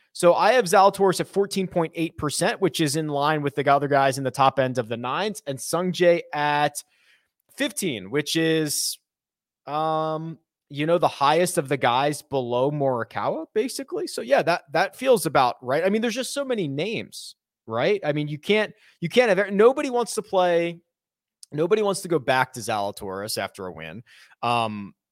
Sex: male